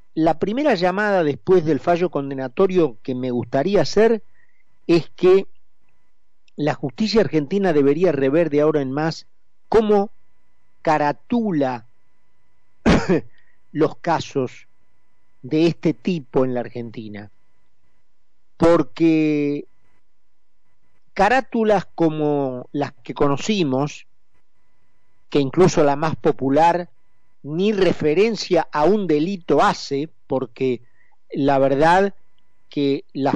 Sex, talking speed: male, 95 wpm